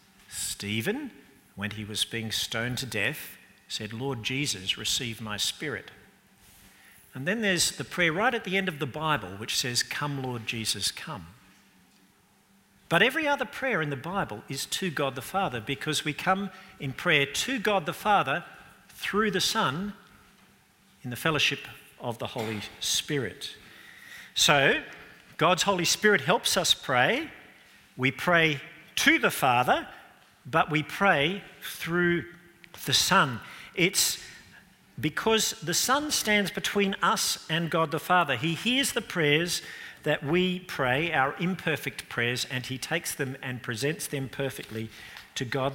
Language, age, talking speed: English, 50-69, 145 wpm